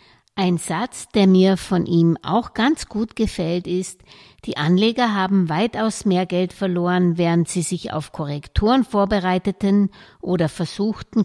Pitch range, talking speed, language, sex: 165-210 Hz, 140 wpm, German, female